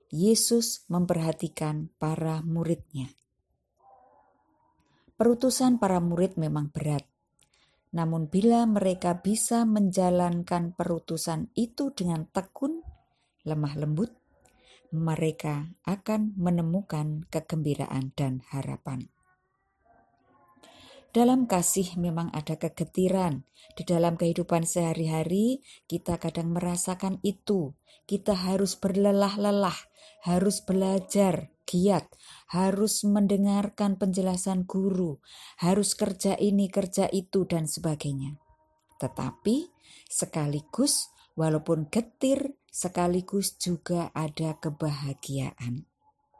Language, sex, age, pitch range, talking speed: Indonesian, female, 20-39, 165-205 Hz, 85 wpm